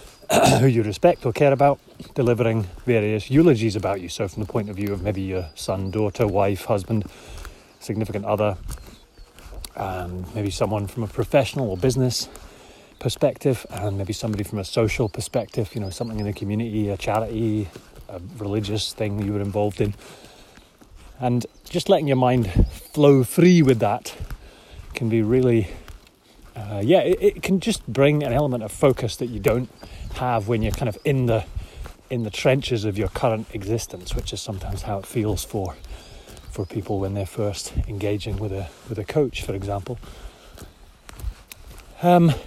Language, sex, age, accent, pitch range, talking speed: English, male, 30-49, British, 100-120 Hz, 165 wpm